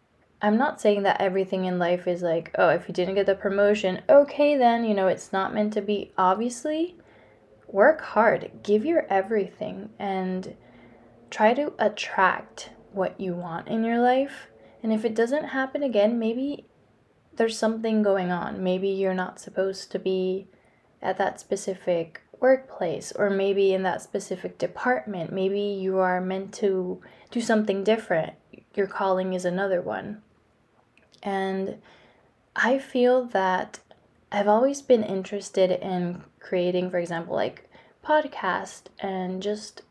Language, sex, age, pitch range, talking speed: English, female, 20-39, 185-225 Hz, 145 wpm